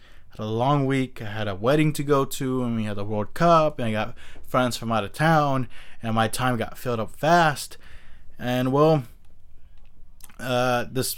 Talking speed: 195 wpm